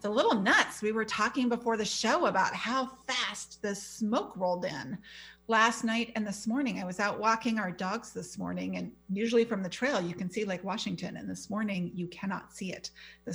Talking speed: 210 wpm